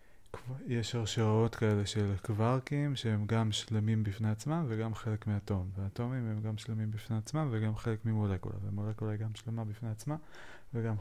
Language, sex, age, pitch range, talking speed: Hebrew, male, 30-49, 105-115 Hz, 160 wpm